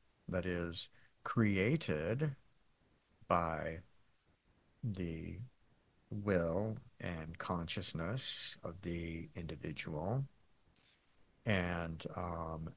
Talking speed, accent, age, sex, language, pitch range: 60 wpm, American, 50-69, male, English, 85-105 Hz